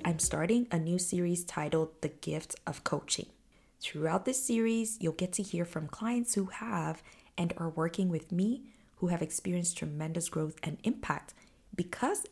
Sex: female